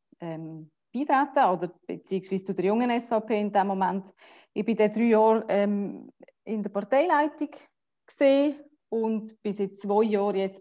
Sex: female